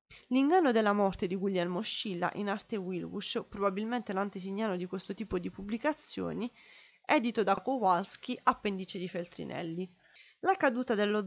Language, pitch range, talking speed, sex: Italian, 185-240 Hz, 135 wpm, female